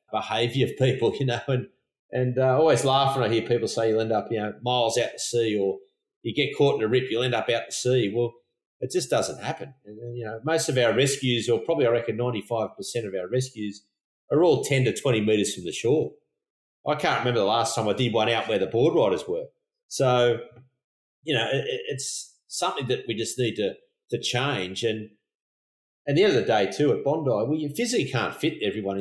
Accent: Australian